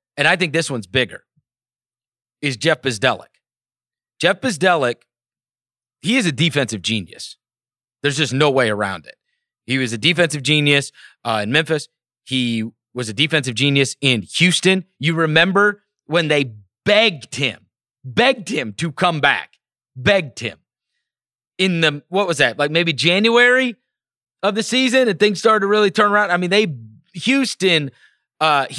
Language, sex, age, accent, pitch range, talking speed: English, male, 30-49, American, 130-185 Hz, 150 wpm